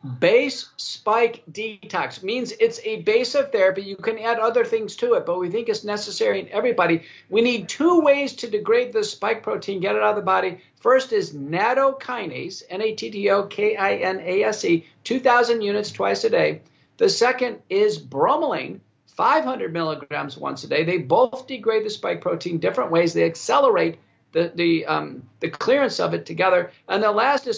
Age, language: 50-69, English